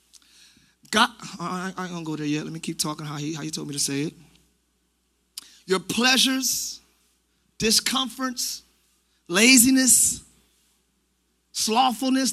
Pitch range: 185-260 Hz